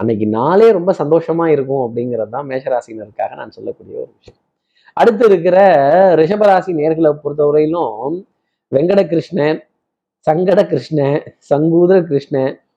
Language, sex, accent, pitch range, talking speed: Tamil, male, native, 135-175 Hz, 100 wpm